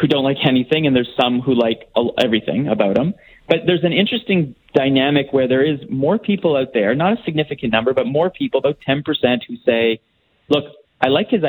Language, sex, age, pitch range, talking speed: English, male, 30-49, 120-155 Hz, 205 wpm